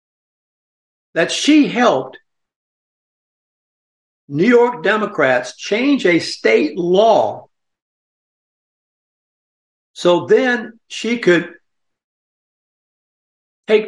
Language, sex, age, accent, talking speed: English, male, 60-79, American, 65 wpm